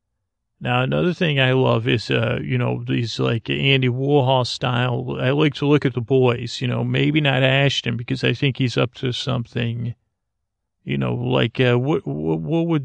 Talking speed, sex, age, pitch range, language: 190 wpm, male, 40-59, 115-135 Hz, English